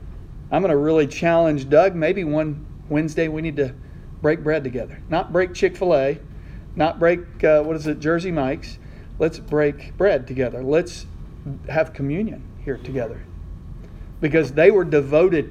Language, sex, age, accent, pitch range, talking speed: English, male, 40-59, American, 130-165 Hz, 160 wpm